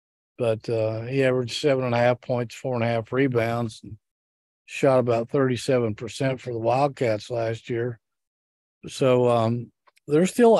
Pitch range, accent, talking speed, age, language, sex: 115-140 Hz, American, 155 wpm, 50-69, English, male